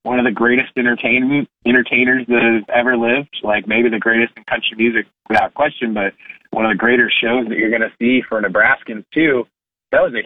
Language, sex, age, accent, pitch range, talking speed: English, male, 30-49, American, 115-130 Hz, 210 wpm